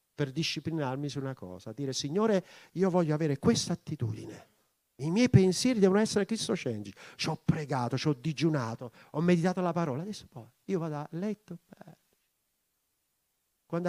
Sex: male